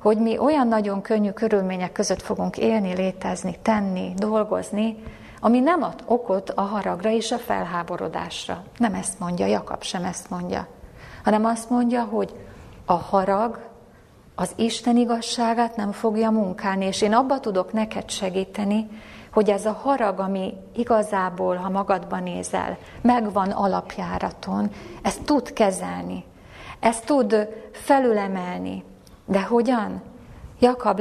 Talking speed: 130 wpm